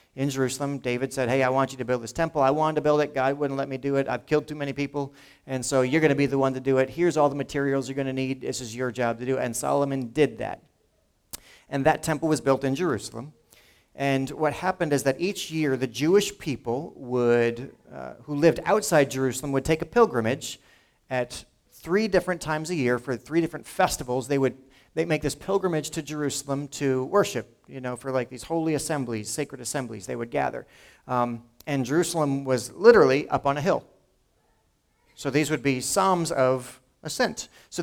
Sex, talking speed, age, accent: male, 215 wpm, 40-59, American